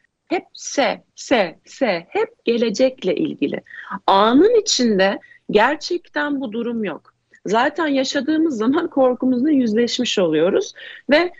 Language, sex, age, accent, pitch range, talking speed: Turkish, female, 40-59, native, 215-280 Hz, 105 wpm